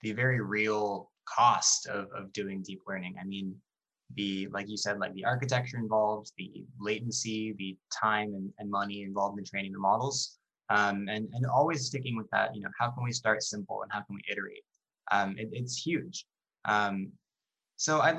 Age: 20-39